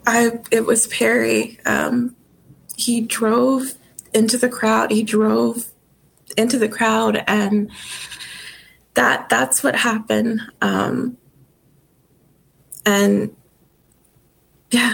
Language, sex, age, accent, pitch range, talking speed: English, female, 20-39, American, 200-225 Hz, 90 wpm